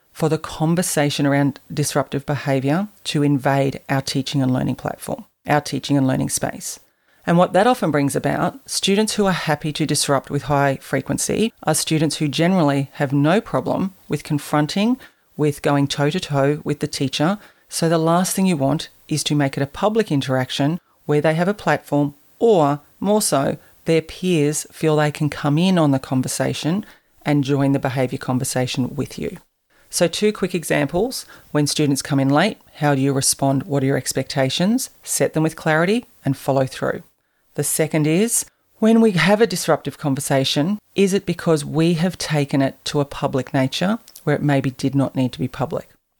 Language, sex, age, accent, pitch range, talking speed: English, female, 40-59, Australian, 140-180 Hz, 180 wpm